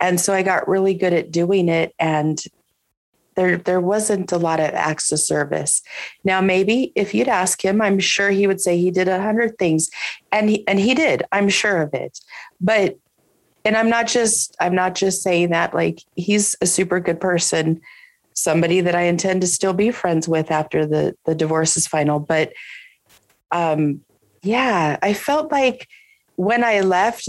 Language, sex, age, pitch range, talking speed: English, female, 30-49, 165-200 Hz, 185 wpm